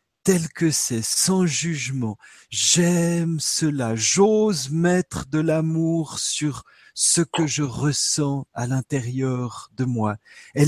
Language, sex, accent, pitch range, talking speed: French, male, French, 135-205 Hz, 120 wpm